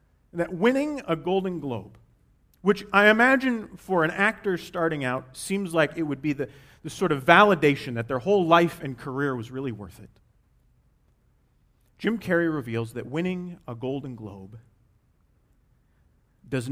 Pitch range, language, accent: 110-175 Hz, English, American